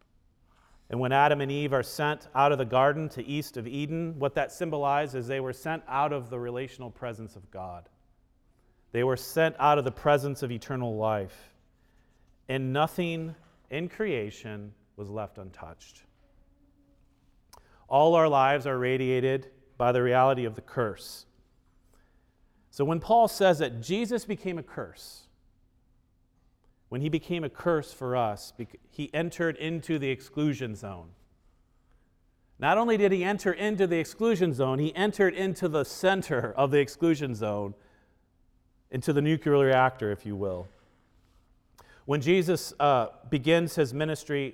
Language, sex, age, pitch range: English, male, 40-59, 115-155 Hz